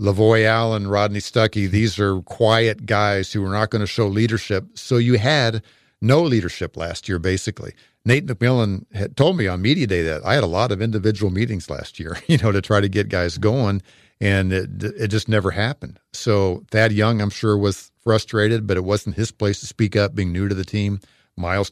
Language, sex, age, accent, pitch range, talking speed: English, male, 50-69, American, 100-115 Hz, 210 wpm